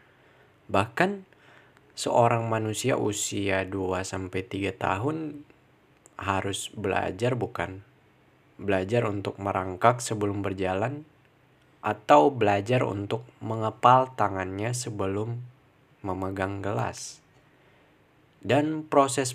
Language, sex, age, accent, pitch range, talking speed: Indonesian, male, 20-39, native, 105-140 Hz, 75 wpm